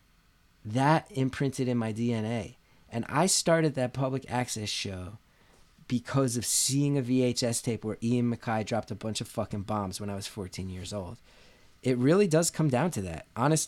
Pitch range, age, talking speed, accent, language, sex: 110-145 Hz, 20-39, 180 wpm, American, English, male